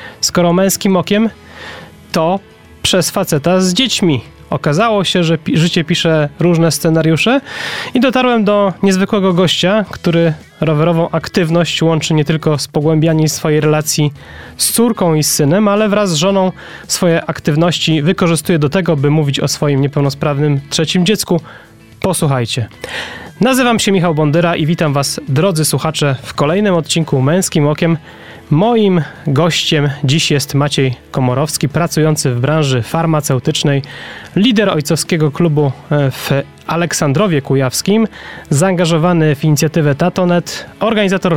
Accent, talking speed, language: native, 125 wpm, Polish